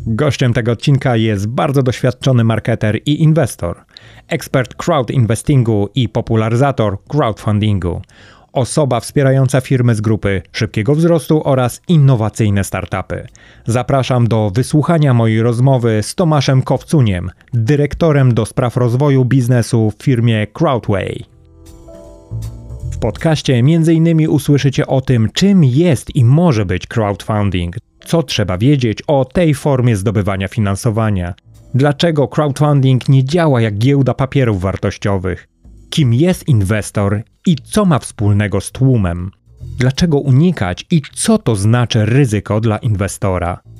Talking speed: 120 wpm